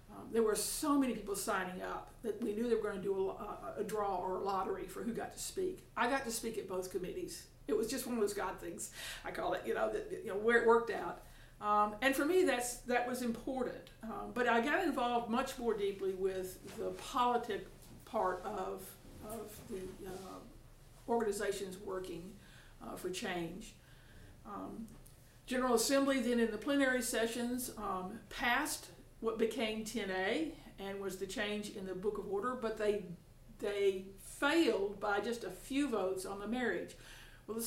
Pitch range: 195-245 Hz